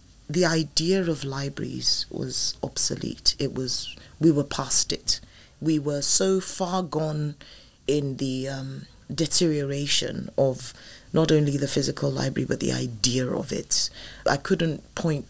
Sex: female